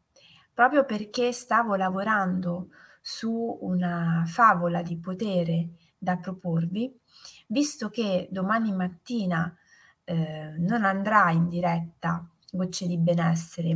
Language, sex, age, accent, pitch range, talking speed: Italian, female, 30-49, native, 175-235 Hz, 100 wpm